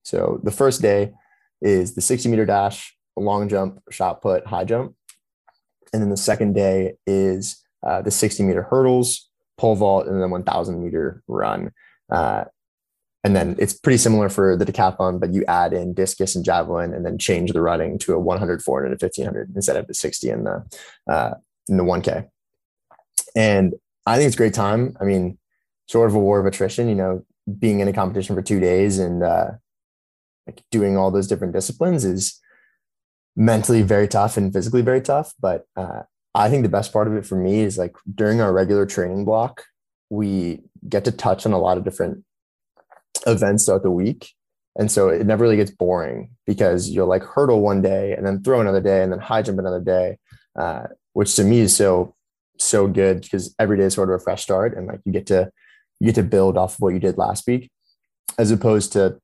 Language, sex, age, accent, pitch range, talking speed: English, male, 20-39, American, 95-110 Hz, 205 wpm